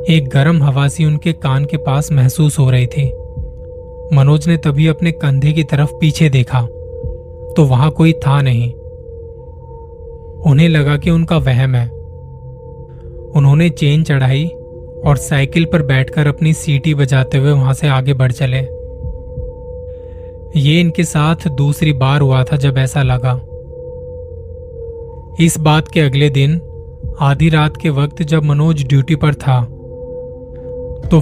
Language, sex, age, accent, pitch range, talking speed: Hindi, male, 20-39, native, 130-160 Hz, 140 wpm